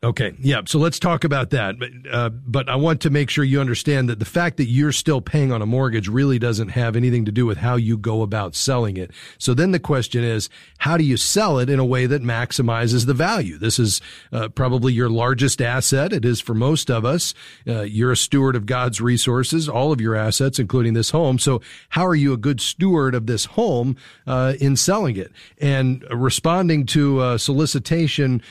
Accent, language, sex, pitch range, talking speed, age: American, English, male, 115-140 Hz, 215 wpm, 40-59